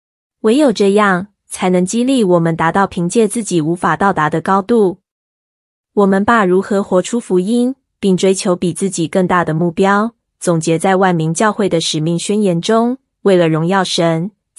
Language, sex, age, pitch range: Chinese, female, 20-39, 175-215 Hz